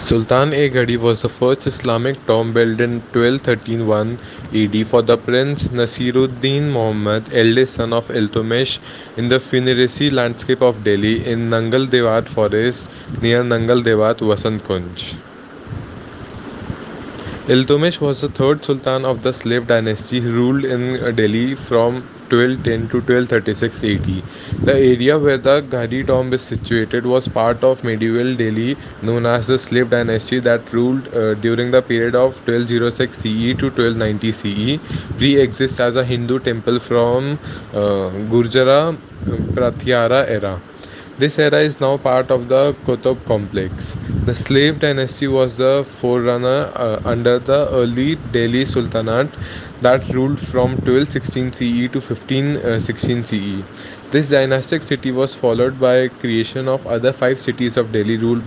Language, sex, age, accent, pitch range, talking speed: English, male, 20-39, Indian, 115-130 Hz, 140 wpm